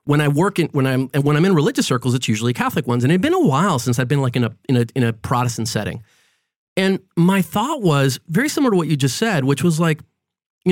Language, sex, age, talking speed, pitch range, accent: English, male, 30-49, 275 wpm, 135-190 Hz, American